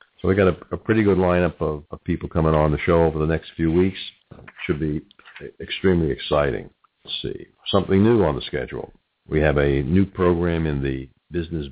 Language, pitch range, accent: English, 75-90 Hz, American